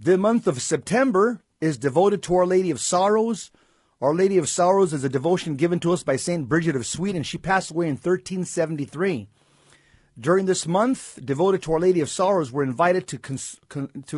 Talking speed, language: 185 wpm, English